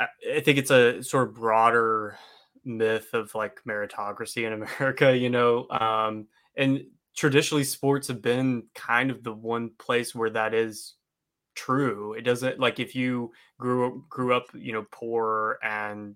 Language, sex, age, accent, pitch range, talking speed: English, male, 20-39, American, 110-130 Hz, 160 wpm